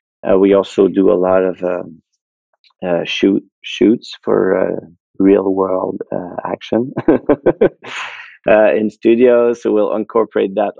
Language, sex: English, male